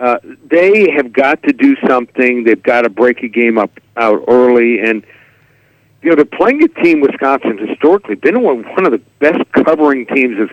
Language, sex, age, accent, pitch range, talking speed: English, male, 60-79, American, 120-155 Hz, 190 wpm